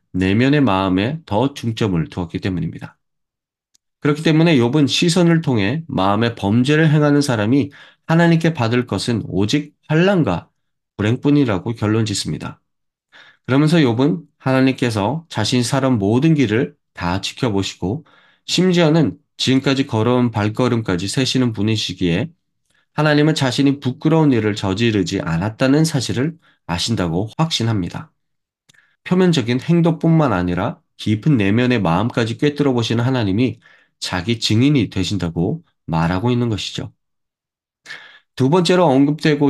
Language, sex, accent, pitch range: Korean, male, native, 105-145 Hz